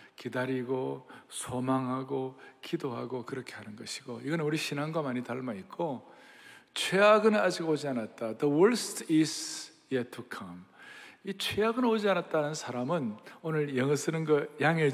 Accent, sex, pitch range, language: native, male, 130-185 Hz, Korean